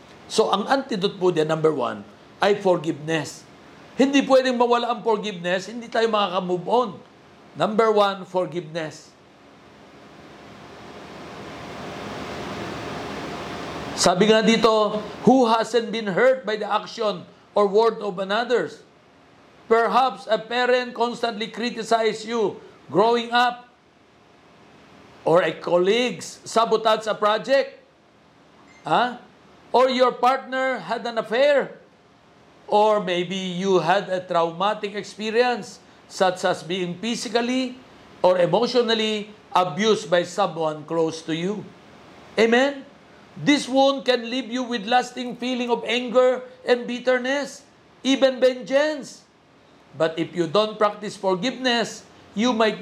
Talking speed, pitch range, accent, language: 115 wpm, 180-245 Hz, native, Filipino